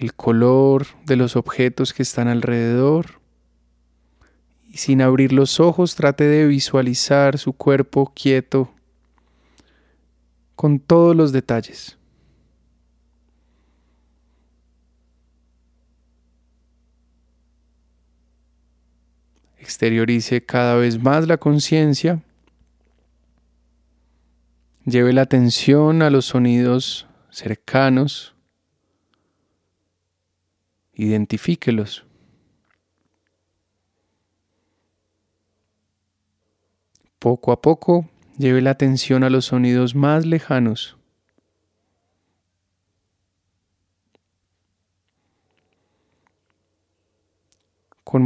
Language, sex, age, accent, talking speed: Spanish, male, 30-49, Colombian, 60 wpm